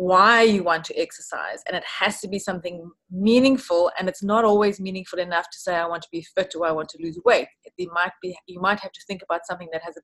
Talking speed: 245 wpm